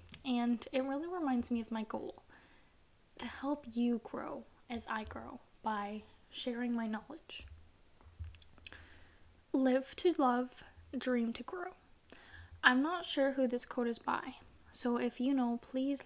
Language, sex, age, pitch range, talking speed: English, female, 10-29, 220-265 Hz, 140 wpm